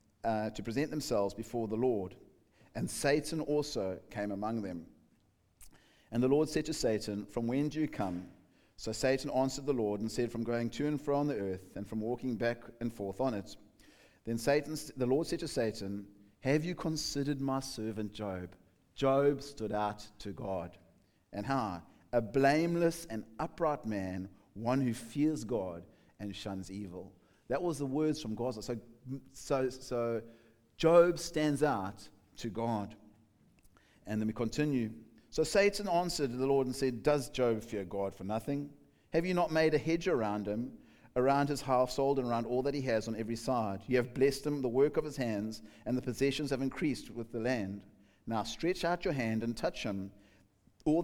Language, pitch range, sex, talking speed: English, 105-140 Hz, male, 185 wpm